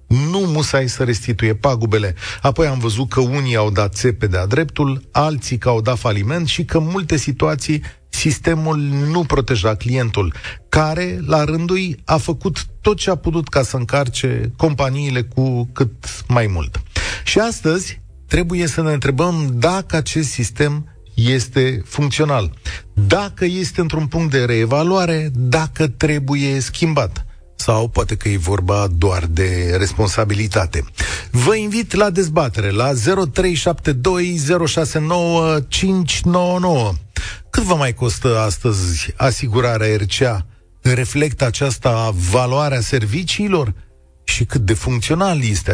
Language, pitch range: Romanian, 110-155 Hz